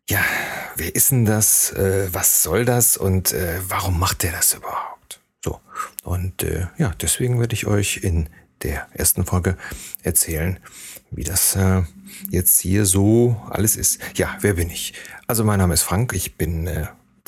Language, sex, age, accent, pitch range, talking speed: German, male, 40-59, German, 85-105 Hz, 170 wpm